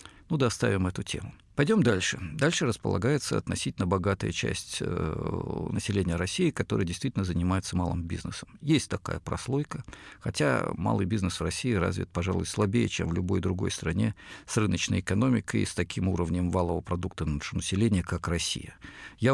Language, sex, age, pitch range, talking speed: Russian, male, 50-69, 90-115 Hz, 150 wpm